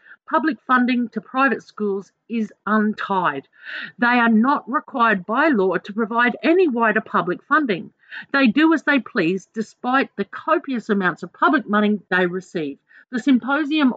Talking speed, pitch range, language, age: 150 wpm, 210-275 Hz, English, 50-69